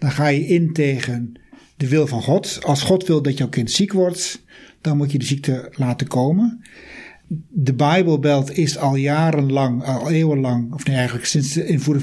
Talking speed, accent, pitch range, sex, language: 185 wpm, Dutch, 135-170 Hz, male, Dutch